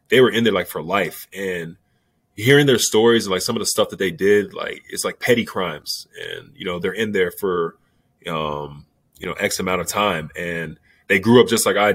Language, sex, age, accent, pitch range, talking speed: English, male, 20-39, American, 90-120 Hz, 230 wpm